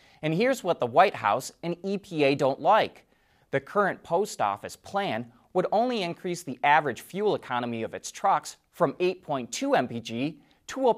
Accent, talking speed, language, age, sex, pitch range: American, 165 wpm, English, 30-49, male, 135-200 Hz